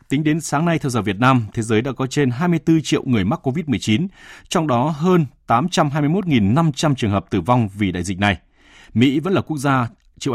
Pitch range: 105-135 Hz